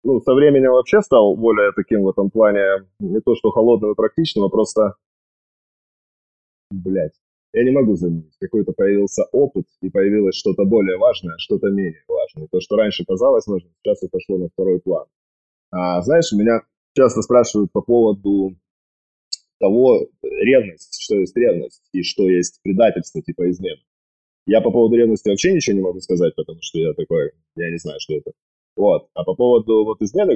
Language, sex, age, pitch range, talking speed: Russian, male, 20-39, 90-125 Hz, 170 wpm